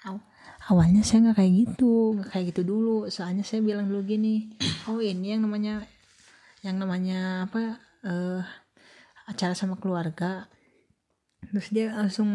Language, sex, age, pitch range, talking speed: Indonesian, female, 20-39, 185-225 Hz, 135 wpm